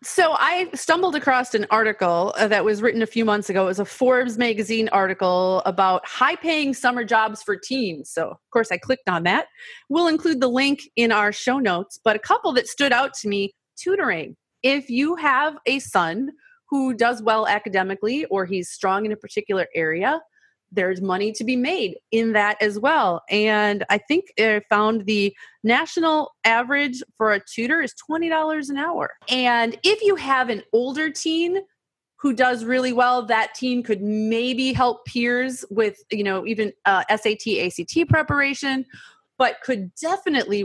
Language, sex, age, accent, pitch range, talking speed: English, female, 30-49, American, 200-260 Hz, 175 wpm